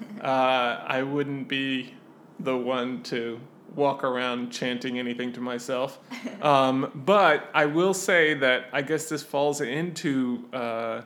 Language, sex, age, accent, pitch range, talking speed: English, male, 20-39, American, 125-150 Hz, 135 wpm